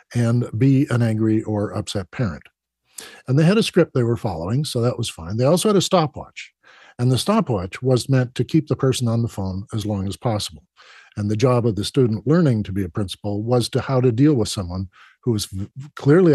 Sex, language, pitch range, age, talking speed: male, English, 105-130 Hz, 50-69, 225 wpm